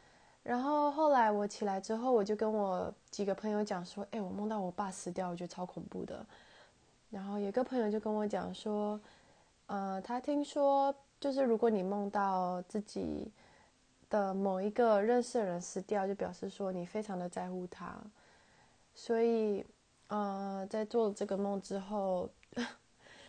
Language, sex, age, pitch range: English, female, 20-39, 195-230 Hz